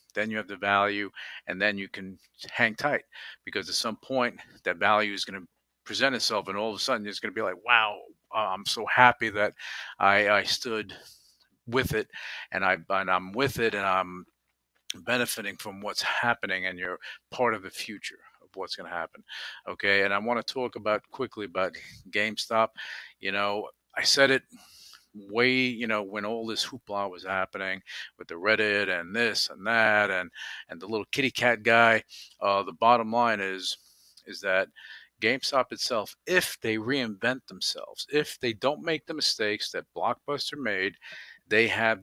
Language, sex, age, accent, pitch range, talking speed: English, male, 50-69, American, 95-120 Hz, 180 wpm